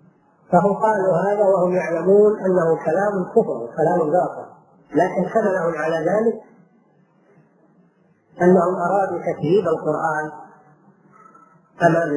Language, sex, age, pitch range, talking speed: Arabic, female, 40-59, 165-205 Hz, 95 wpm